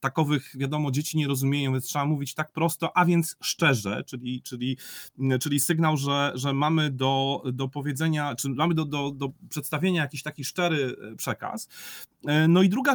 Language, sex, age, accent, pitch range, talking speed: Polish, male, 40-59, native, 140-175 Hz, 165 wpm